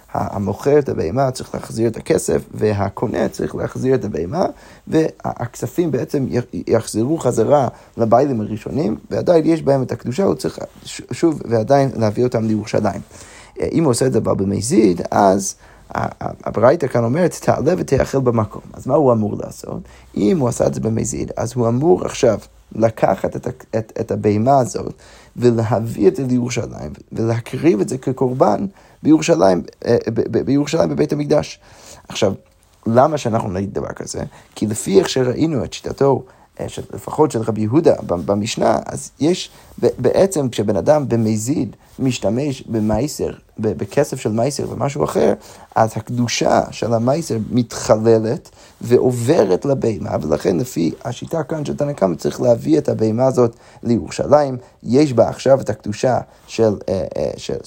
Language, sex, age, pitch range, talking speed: Hebrew, male, 30-49, 110-135 Hz, 135 wpm